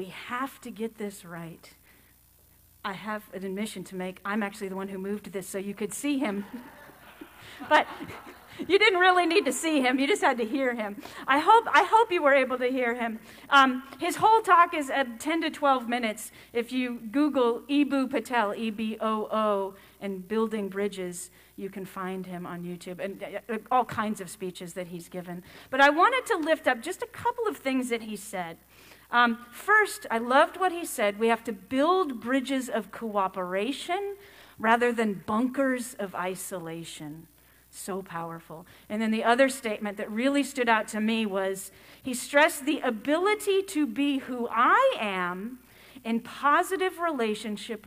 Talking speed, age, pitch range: 175 wpm, 40-59, 200-280 Hz